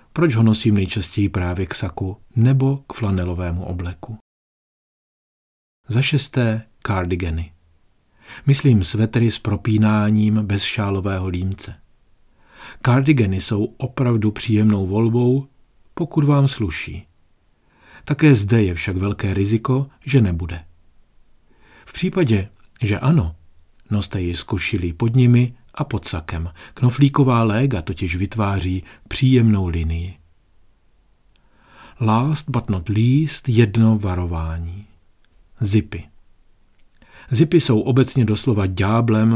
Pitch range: 90-120 Hz